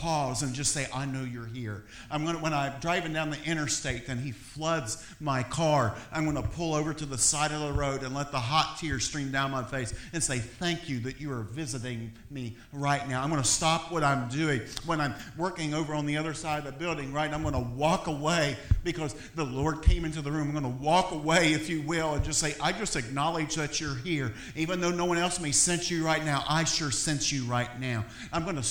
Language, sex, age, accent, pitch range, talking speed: English, male, 50-69, American, 140-170 Hz, 250 wpm